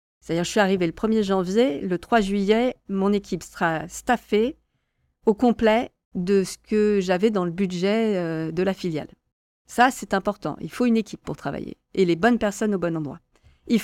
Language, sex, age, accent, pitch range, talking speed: French, female, 40-59, French, 170-225 Hz, 185 wpm